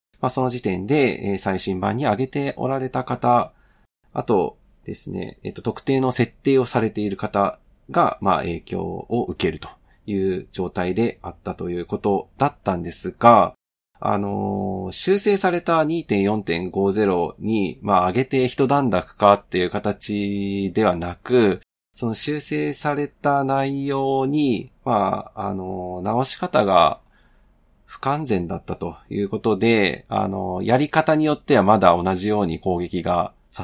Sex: male